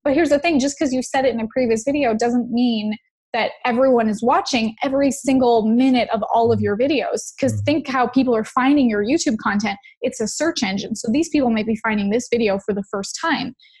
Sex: female